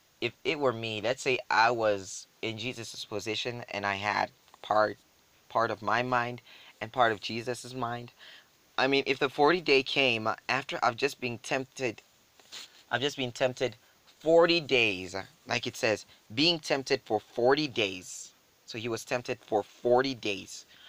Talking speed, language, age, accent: 160 wpm, English, 20-39, American